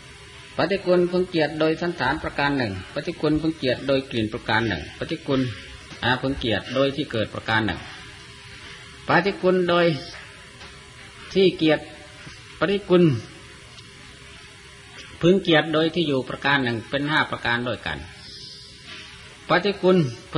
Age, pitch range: 30-49, 125-165 Hz